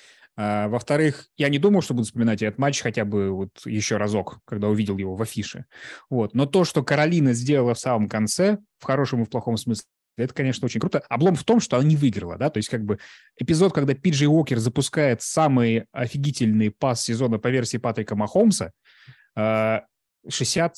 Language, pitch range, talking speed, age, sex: Russian, 115-150 Hz, 185 wpm, 20-39, male